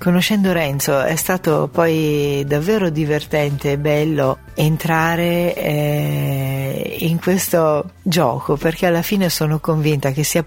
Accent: native